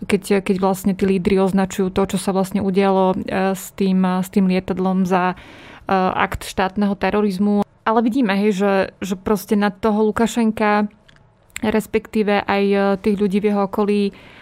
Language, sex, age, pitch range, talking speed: Slovak, female, 20-39, 190-210 Hz, 150 wpm